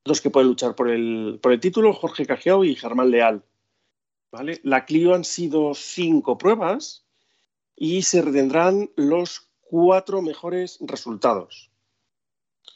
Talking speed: 120 wpm